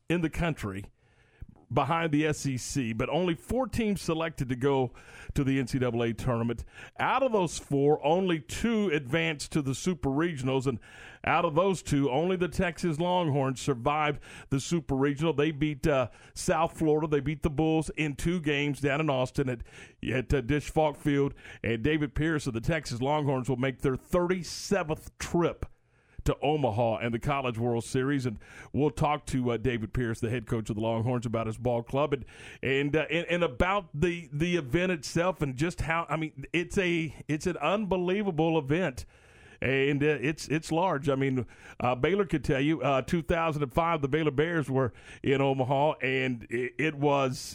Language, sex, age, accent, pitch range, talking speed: English, male, 50-69, American, 130-165 Hz, 180 wpm